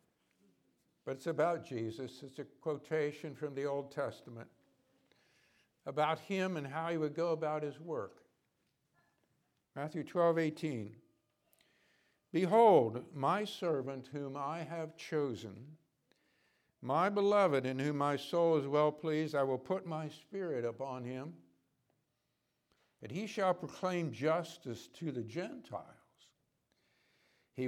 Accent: American